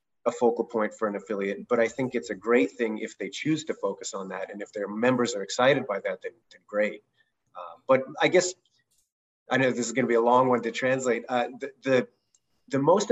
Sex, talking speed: male, 240 wpm